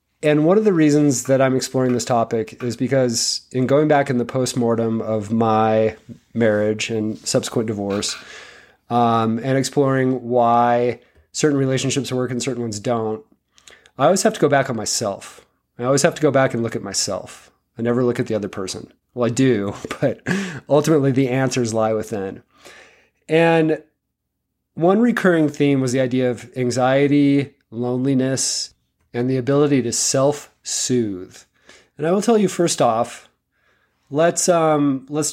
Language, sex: English, male